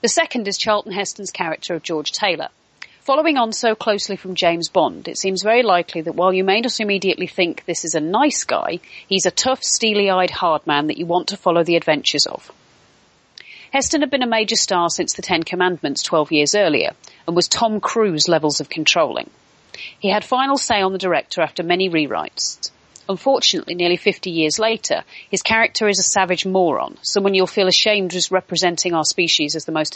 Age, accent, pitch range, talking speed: 40-59, British, 170-210 Hz, 195 wpm